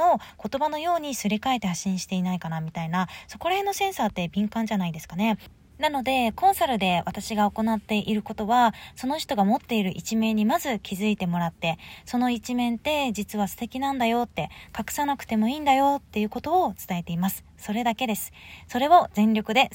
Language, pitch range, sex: Japanese, 195-265 Hz, female